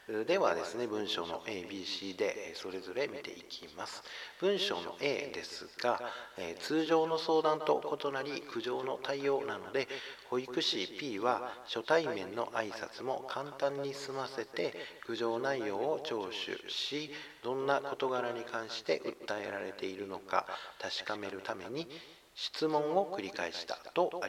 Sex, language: male, Japanese